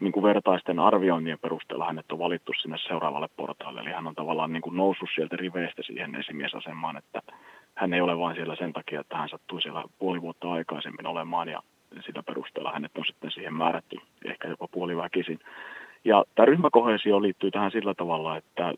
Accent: native